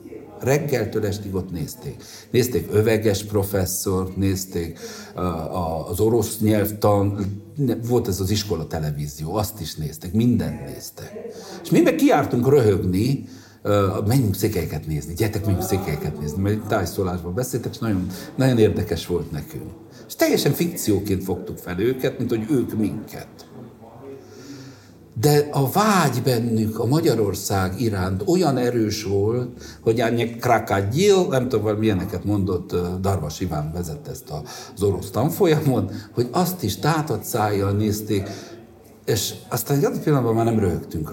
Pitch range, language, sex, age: 95-125 Hz, Hungarian, male, 60-79